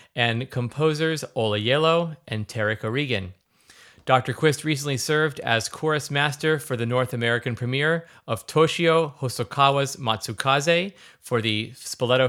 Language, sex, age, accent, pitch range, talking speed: English, male, 30-49, American, 115-150 Hz, 125 wpm